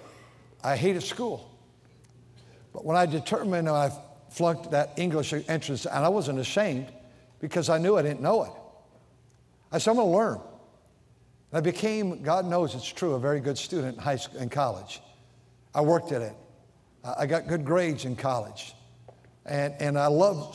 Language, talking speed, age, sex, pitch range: English, 170 wpm, 60-79, male, 130-175 Hz